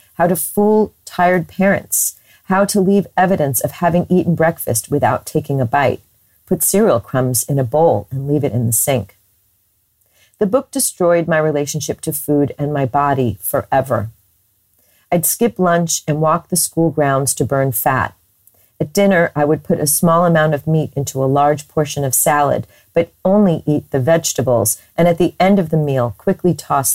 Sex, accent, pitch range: female, American, 125-180 Hz